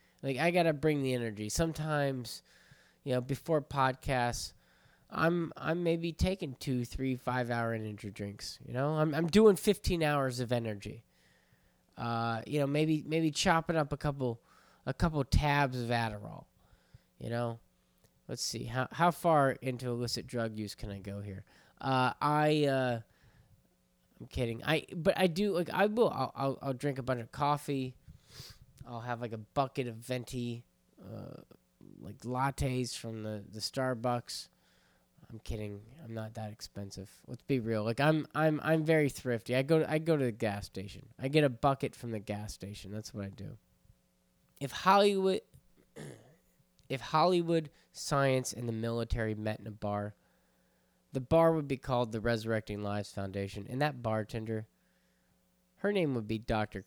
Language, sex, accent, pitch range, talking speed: English, male, American, 105-145 Hz, 165 wpm